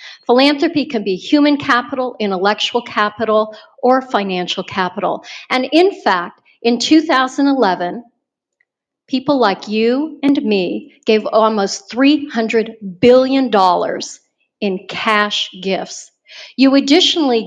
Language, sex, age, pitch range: English, female, 50-69, 200-275 Hz